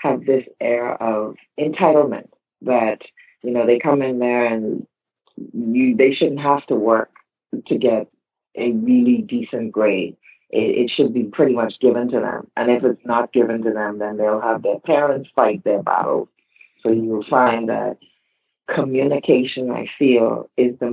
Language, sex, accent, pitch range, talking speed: English, female, American, 115-145 Hz, 170 wpm